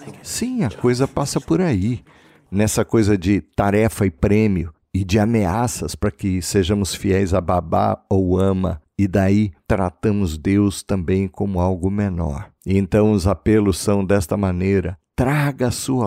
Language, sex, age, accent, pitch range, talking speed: Portuguese, male, 50-69, Brazilian, 95-110 Hz, 150 wpm